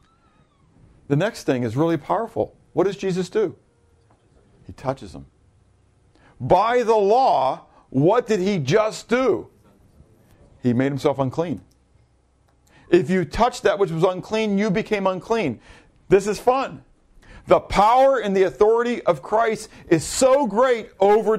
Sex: male